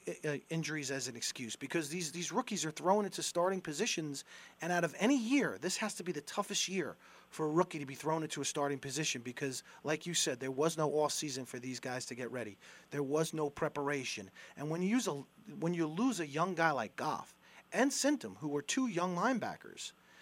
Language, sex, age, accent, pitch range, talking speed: English, male, 40-59, American, 140-165 Hz, 220 wpm